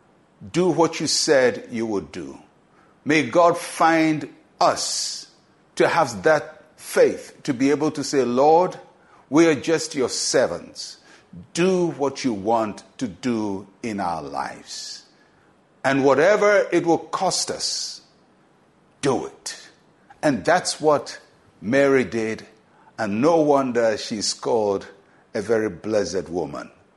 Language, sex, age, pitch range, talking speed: English, male, 60-79, 130-160 Hz, 125 wpm